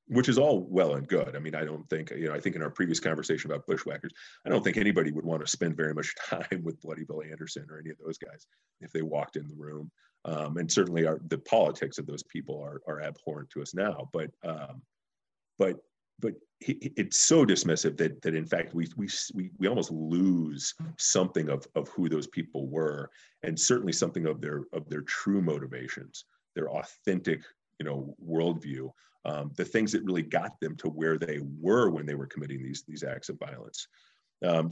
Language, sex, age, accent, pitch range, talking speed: English, male, 40-59, American, 75-95 Hz, 215 wpm